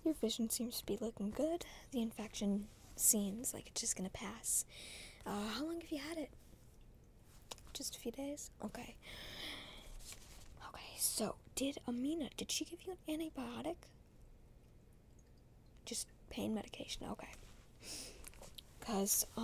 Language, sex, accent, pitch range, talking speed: English, female, American, 215-280 Hz, 130 wpm